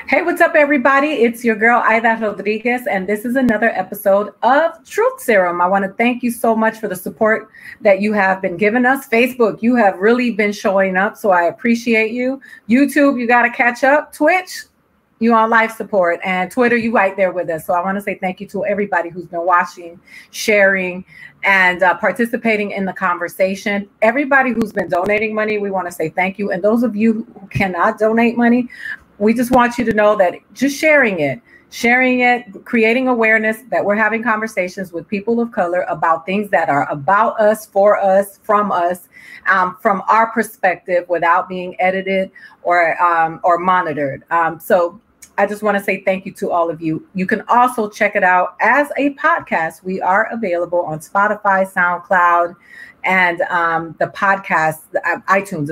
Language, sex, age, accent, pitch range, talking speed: English, female, 30-49, American, 185-230 Hz, 190 wpm